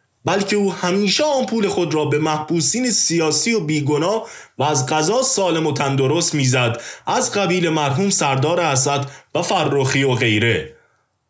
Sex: male